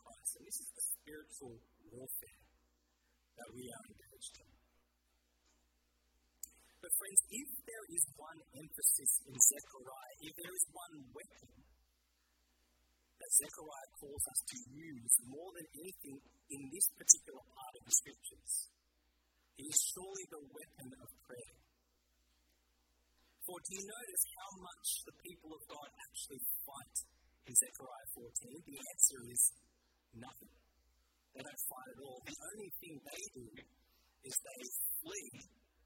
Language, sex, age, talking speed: English, male, 50-69, 135 wpm